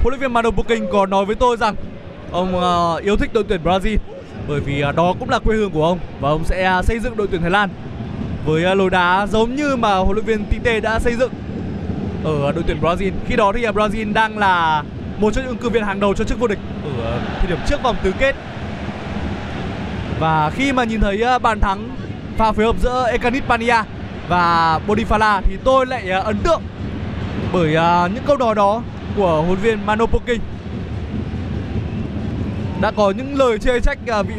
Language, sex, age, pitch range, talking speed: Vietnamese, male, 20-39, 160-230 Hz, 195 wpm